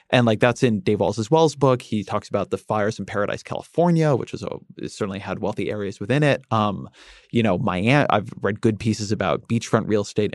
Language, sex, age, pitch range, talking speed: English, male, 30-49, 110-140 Hz, 210 wpm